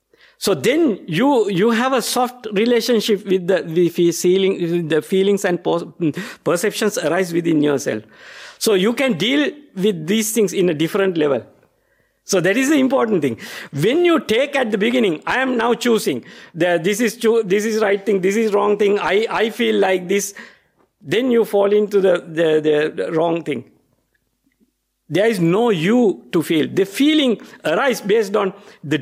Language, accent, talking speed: English, Indian, 175 wpm